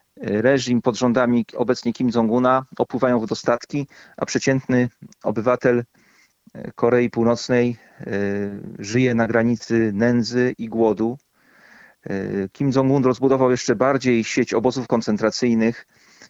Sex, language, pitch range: male, Polish, 110-130 Hz